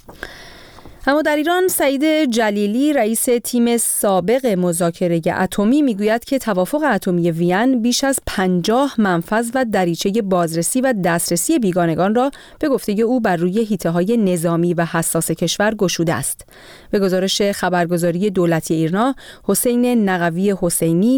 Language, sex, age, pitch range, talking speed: Persian, female, 30-49, 175-235 Hz, 135 wpm